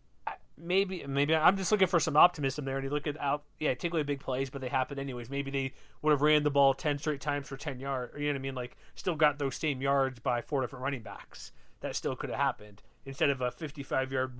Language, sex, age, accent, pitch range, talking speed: English, male, 30-49, American, 125-150 Hz, 265 wpm